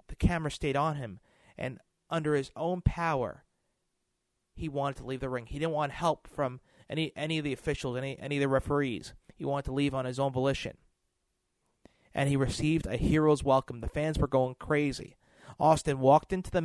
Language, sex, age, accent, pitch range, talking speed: English, male, 30-49, American, 130-155 Hz, 195 wpm